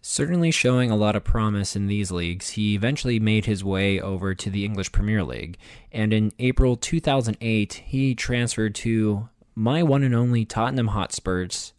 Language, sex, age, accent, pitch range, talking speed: English, male, 20-39, American, 100-115 Hz, 170 wpm